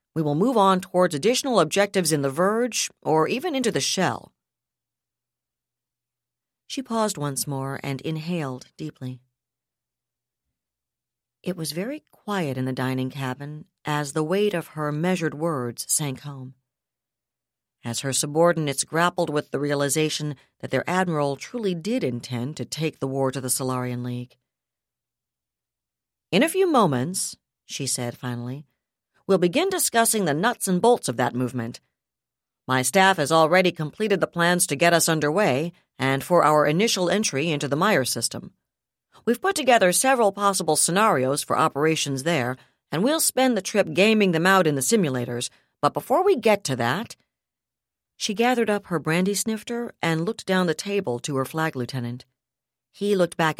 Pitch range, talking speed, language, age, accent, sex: 130-190 Hz, 160 wpm, English, 50-69, American, female